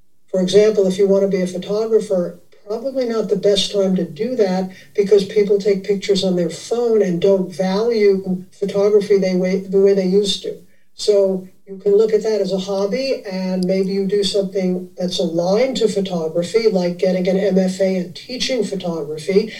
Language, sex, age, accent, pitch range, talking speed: English, male, 60-79, American, 190-215 Hz, 180 wpm